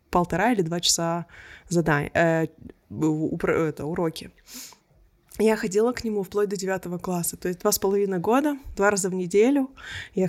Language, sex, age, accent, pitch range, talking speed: Russian, female, 20-39, native, 160-205 Hz, 145 wpm